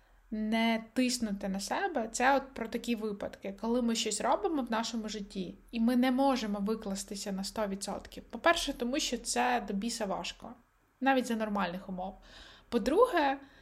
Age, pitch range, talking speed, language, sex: 20-39, 210-255 Hz, 155 wpm, Ukrainian, female